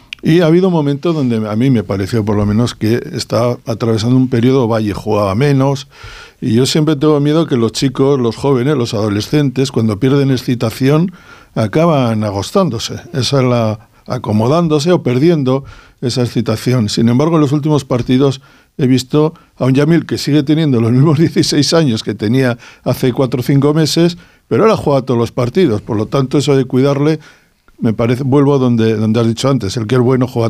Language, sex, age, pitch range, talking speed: Spanish, male, 60-79, 115-140 Hz, 190 wpm